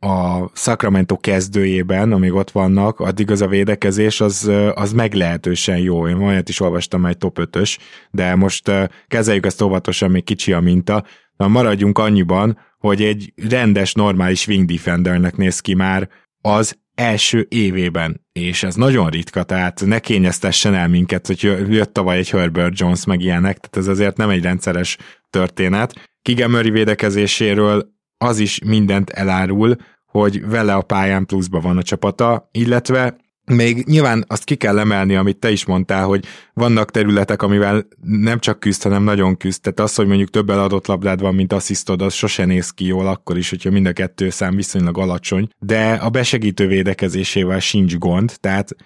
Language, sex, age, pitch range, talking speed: Hungarian, male, 20-39, 95-105 Hz, 165 wpm